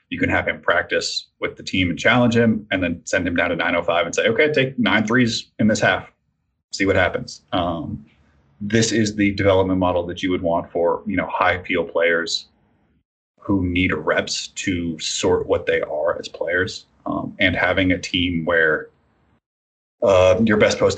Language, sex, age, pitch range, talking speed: English, male, 30-49, 85-120 Hz, 190 wpm